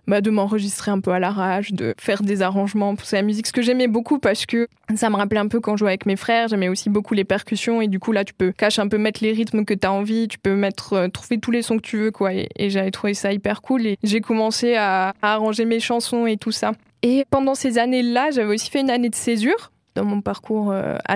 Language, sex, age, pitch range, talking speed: French, female, 20-39, 200-230 Hz, 275 wpm